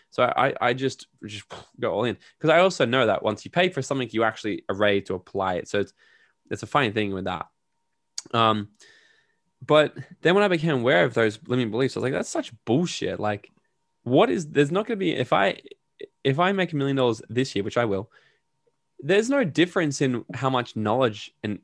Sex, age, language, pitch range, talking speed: male, 10-29, English, 105-150 Hz, 220 wpm